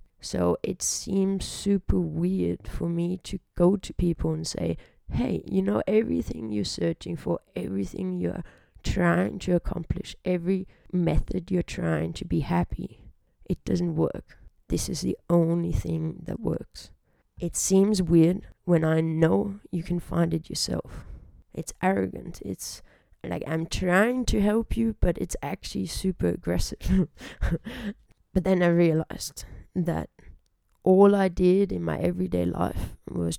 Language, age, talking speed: English, 20-39, 145 wpm